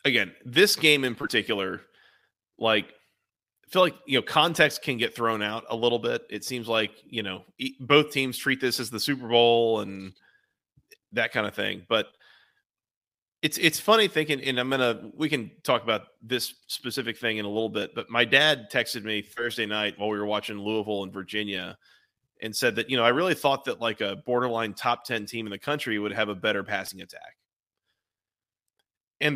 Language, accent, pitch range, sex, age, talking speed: English, American, 110-140 Hz, male, 30-49, 195 wpm